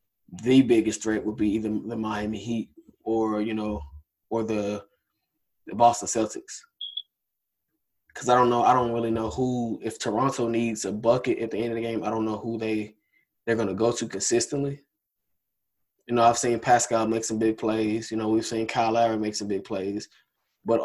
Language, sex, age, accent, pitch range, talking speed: English, male, 20-39, American, 110-120 Hz, 195 wpm